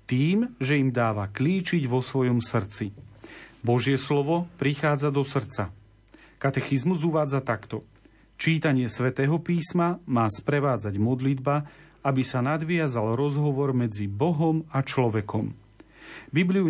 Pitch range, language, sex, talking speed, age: 115-155 Hz, Slovak, male, 110 wpm, 40-59